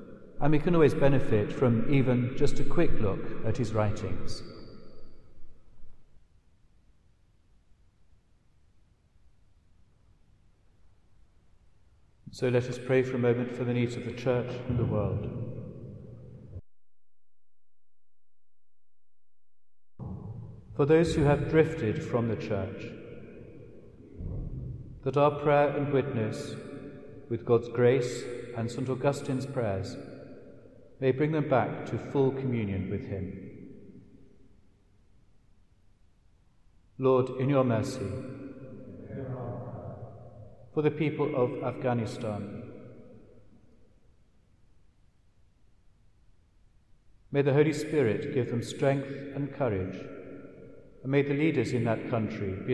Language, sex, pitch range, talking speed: English, male, 105-130 Hz, 95 wpm